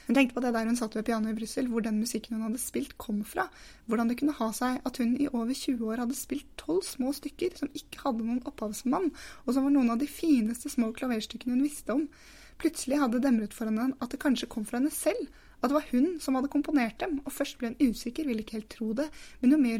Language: English